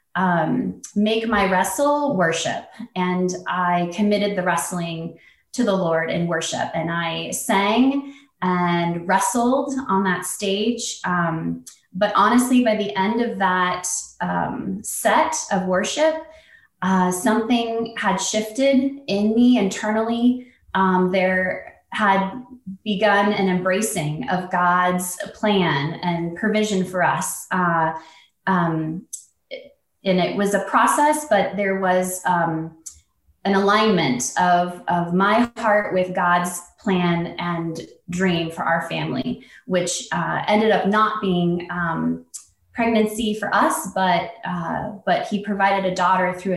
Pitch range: 175-215 Hz